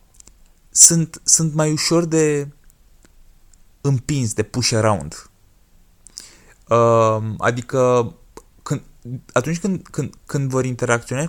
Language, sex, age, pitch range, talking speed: Romanian, male, 20-39, 105-135 Hz, 90 wpm